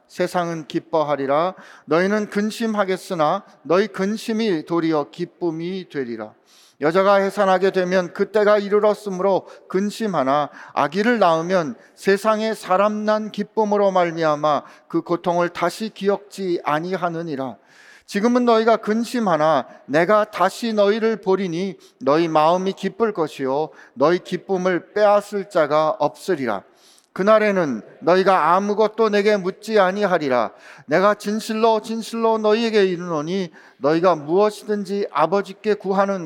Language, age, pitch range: Korean, 40-59, 170-210 Hz